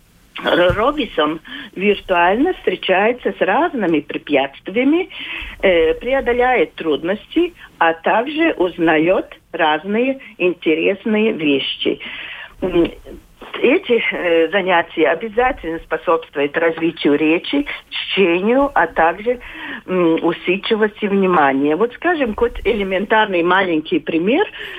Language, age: Russian, 50-69